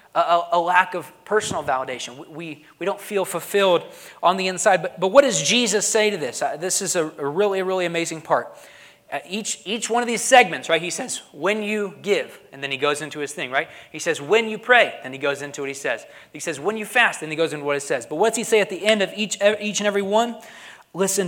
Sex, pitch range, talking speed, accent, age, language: male, 150-200 Hz, 255 wpm, American, 30-49, English